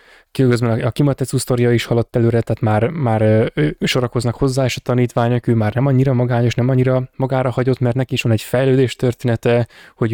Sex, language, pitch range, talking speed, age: male, Hungarian, 120-135 Hz, 185 wpm, 10-29